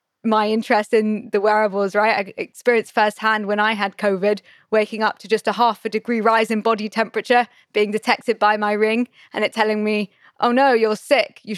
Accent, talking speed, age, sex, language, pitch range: British, 200 wpm, 20-39, female, English, 200-225 Hz